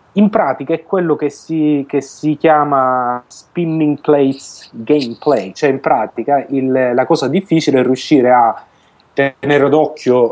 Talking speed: 140 wpm